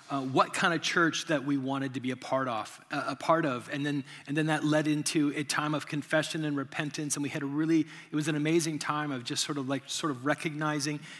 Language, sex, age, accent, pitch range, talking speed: English, male, 30-49, American, 140-160 Hz, 255 wpm